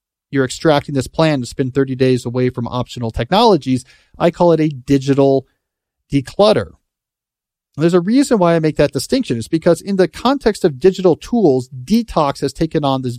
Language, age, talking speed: English, 40-59, 180 wpm